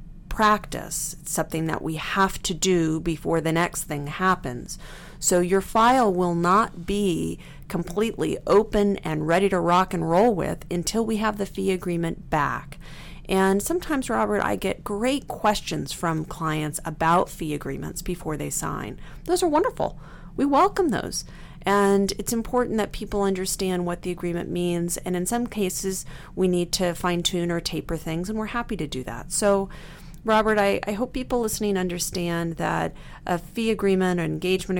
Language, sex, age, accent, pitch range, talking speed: English, female, 40-59, American, 165-205 Hz, 165 wpm